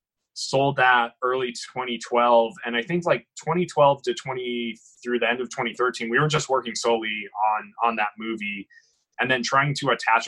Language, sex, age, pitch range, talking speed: English, male, 20-39, 115-130 Hz, 175 wpm